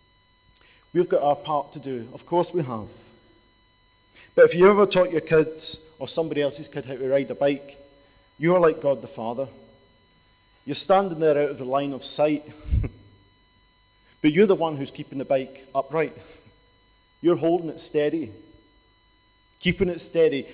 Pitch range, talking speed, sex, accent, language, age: 110-165 Hz, 165 wpm, male, British, English, 40-59